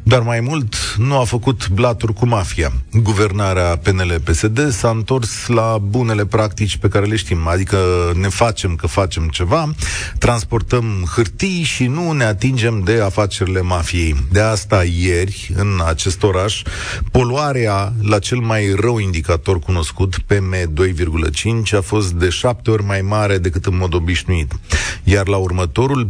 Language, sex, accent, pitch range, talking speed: Romanian, male, native, 90-115 Hz, 145 wpm